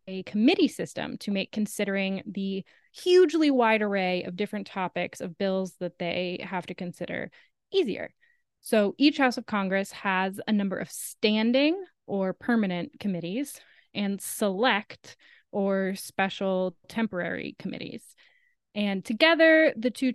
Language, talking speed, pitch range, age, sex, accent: English, 130 wpm, 190-245 Hz, 20-39, female, American